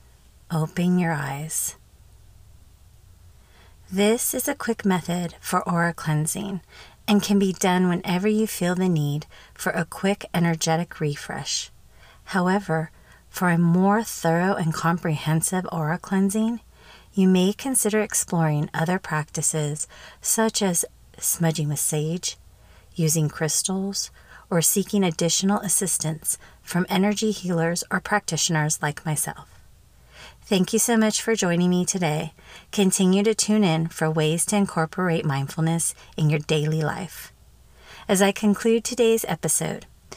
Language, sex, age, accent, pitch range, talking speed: English, female, 30-49, American, 155-195 Hz, 125 wpm